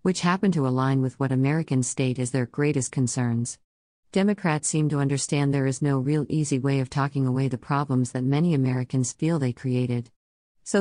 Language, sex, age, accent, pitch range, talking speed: English, female, 50-69, American, 130-155 Hz, 190 wpm